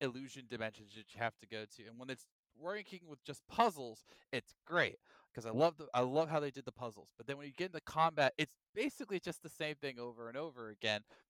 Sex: male